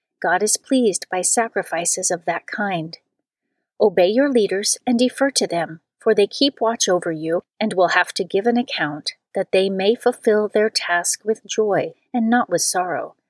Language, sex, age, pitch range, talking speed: English, female, 40-59, 180-240 Hz, 180 wpm